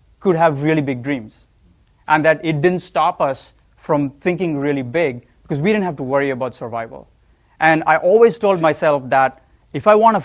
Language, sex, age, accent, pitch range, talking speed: English, male, 30-49, Indian, 130-160 Hz, 195 wpm